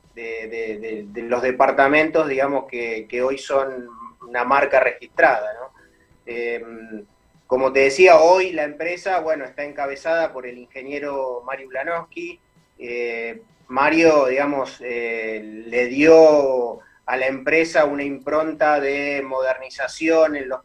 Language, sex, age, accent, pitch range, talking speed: Spanish, male, 30-49, Argentinian, 130-160 Hz, 130 wpm